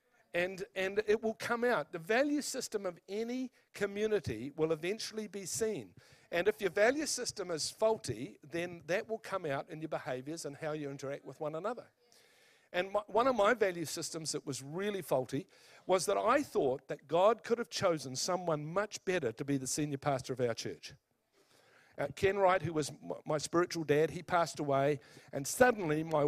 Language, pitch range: English, 145-205 Hz